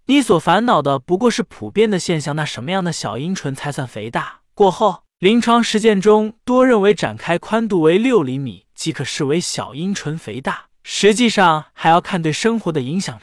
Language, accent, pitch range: Chinese, native, 155-220 Hz